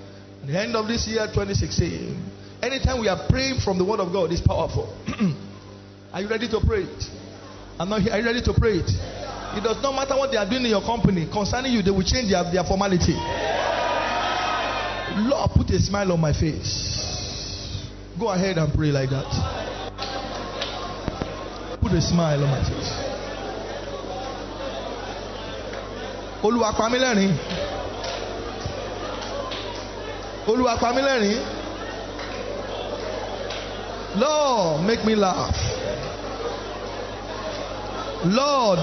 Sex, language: male, English